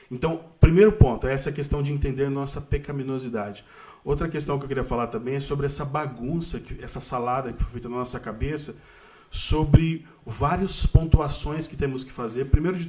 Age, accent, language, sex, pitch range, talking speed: 20-39, Brazilian, Portuguese, male, 125-155 Hz, 175 wpm